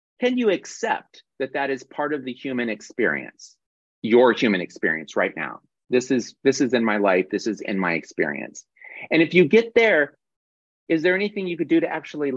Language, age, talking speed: English, 30-49, 200 wpm